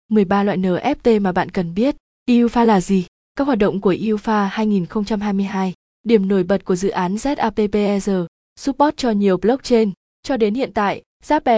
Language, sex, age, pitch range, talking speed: Vietnamese, female, 20-39, 195-240 Hz, 165 wpm